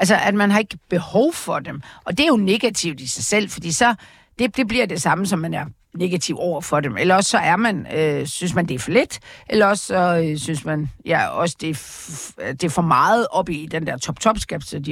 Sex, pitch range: female, 165-220 Hz